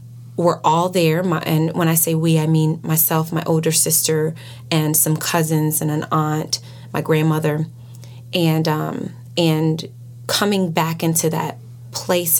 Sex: female